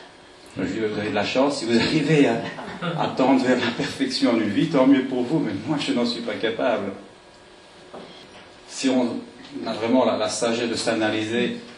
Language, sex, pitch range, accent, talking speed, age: French, male, 95-120 Hz, French, 195 wpm, 40-59